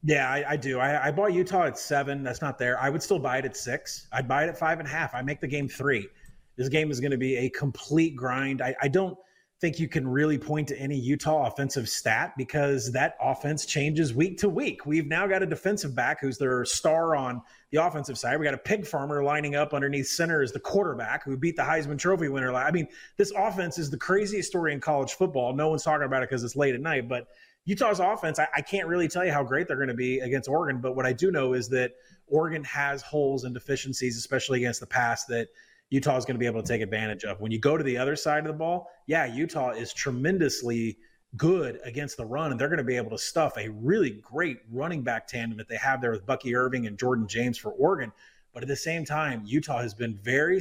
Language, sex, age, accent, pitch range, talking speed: English, male, 30-49, American, 125-160 Hz, 250 wpm